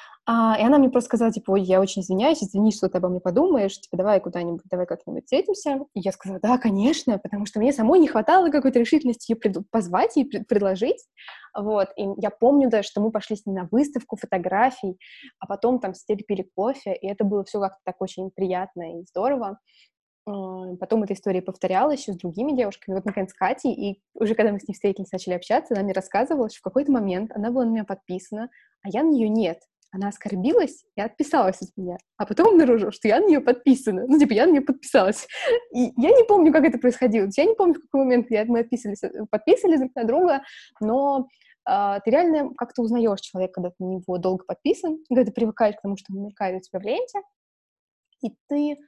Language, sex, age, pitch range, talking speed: Russian, female, 20-39, 195-270 Hz, 210 wpm